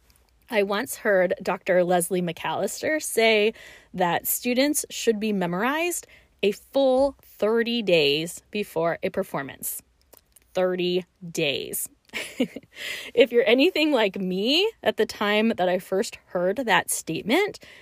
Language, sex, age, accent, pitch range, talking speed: English, female, 20-39, American, 185-245 Hz, 120 wpm